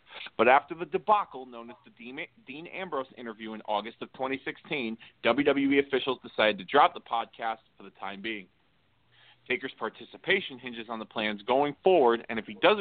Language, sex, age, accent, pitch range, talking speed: English, male, 40-59, American, 115-145 Hz, 175 wpm